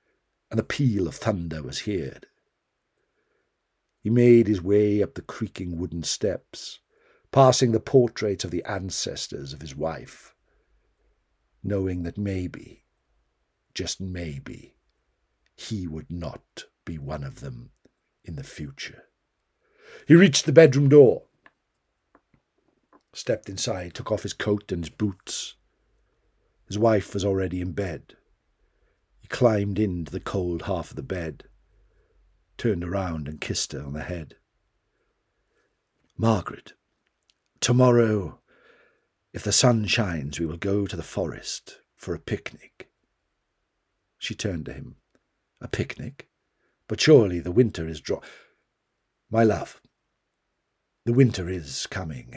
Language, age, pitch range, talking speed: English, 60-79, 85-110 Hz, 125 wpm